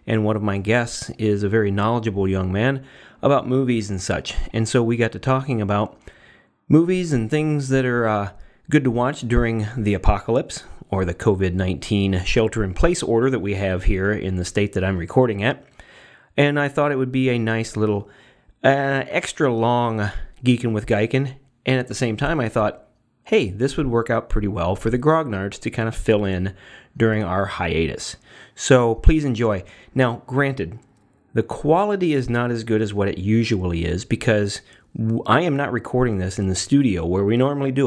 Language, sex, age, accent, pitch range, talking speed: English, male, 30-49, American, 100-130 Hz, 185 wpm